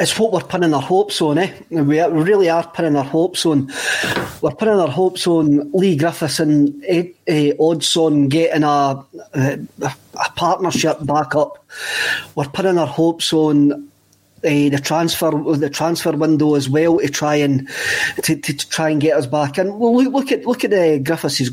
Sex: male